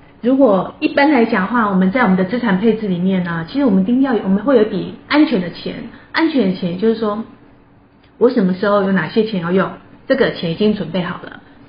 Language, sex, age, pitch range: Chinese, female, 30-49, 185-245 Hz